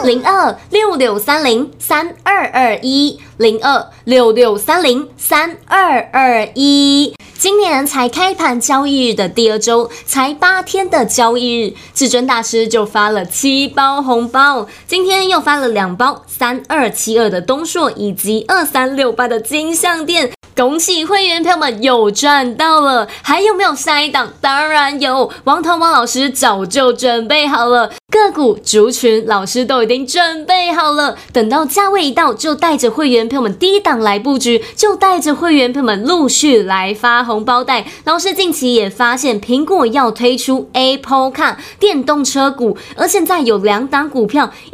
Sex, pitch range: female, 235-315 Hz